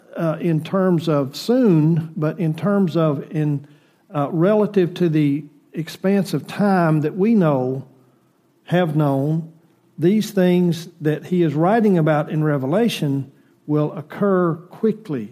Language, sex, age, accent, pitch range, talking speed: English, male, 50-69, American, 145-180 Hz, 135 wpm